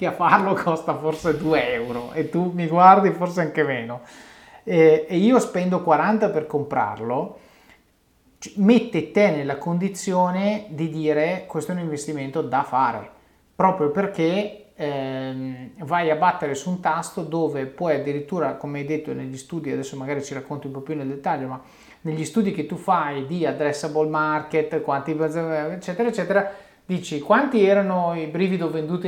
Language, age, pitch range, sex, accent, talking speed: Italian, 30-49, 145-180 Hz, male, native, 155 wpm